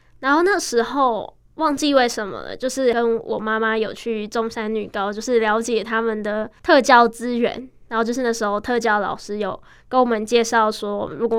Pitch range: 220-260 Hz